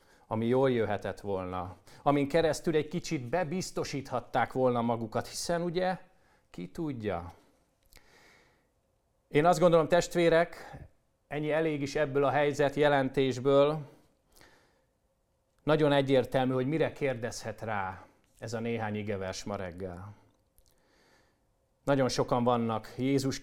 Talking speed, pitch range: 105 wpm, 110-150 Hz